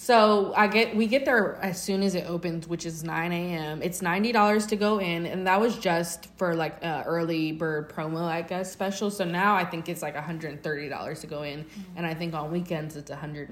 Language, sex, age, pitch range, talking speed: English, female, 20-39, 165-195 Hz, 245 wpm